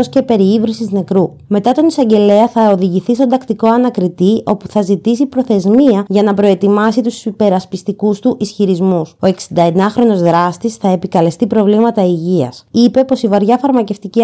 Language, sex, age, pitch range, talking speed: Greek, female, 20-39, 190-235 Hz, 150 wpm